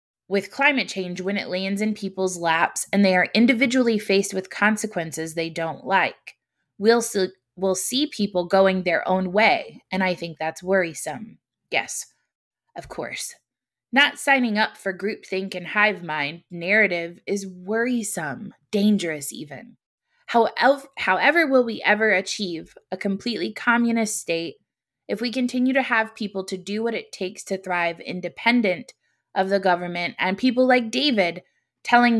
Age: 20-39